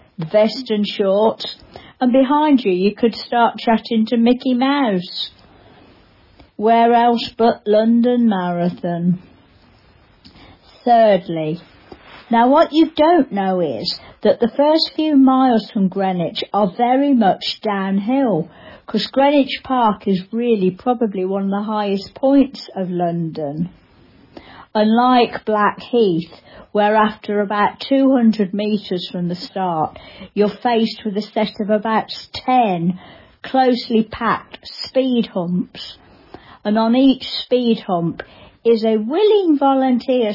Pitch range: 200-250 Hz